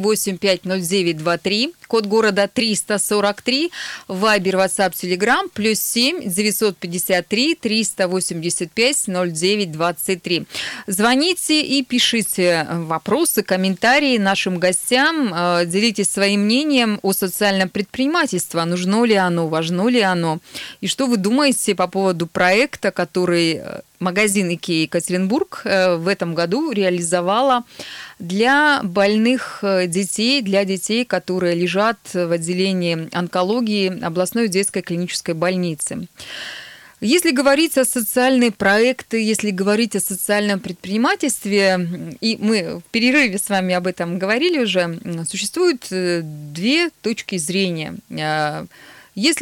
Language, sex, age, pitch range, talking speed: Russian, female, 20-39, 180-230 Hz, 105 wpm